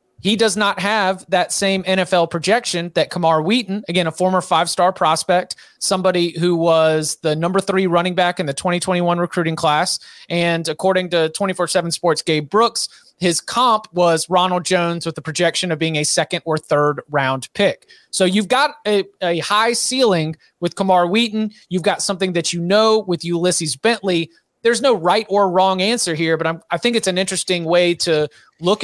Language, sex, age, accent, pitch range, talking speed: English, male, 30-49, American, 165-195 Hz, 185 wpm